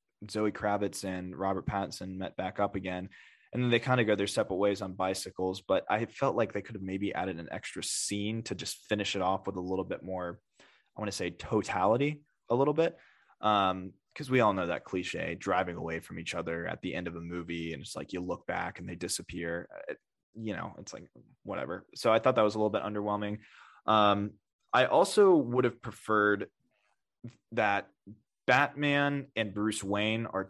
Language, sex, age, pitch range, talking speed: English, male, 20-39, 95-115 Hz, 205 wpm